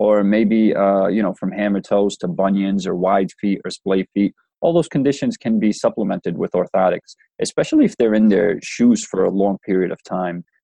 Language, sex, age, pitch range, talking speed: English, male, 20-39, 95-105 Hz, 205 wpm